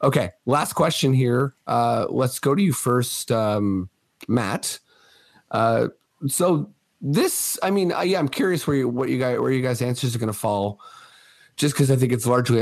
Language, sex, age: English, male, 30-49